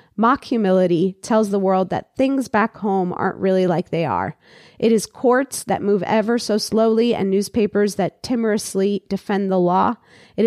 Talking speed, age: 170 wpm, 30-49